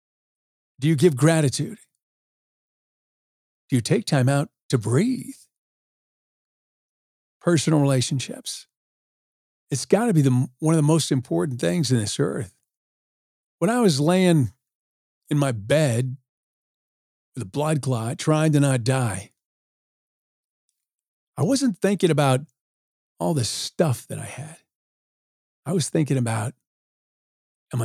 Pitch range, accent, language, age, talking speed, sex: 125-160 Hz, American, English, 50-69, 125 wpm, male